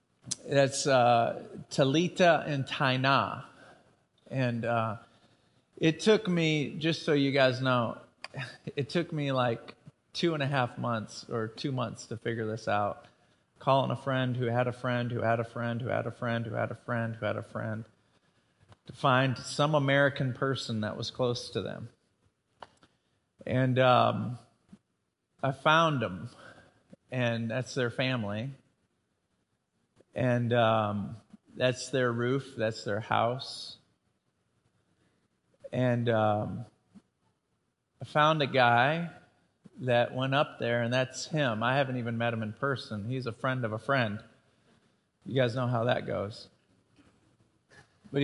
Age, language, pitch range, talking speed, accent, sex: 40-59, English, 115-135 Hz, 145 wpm, American, male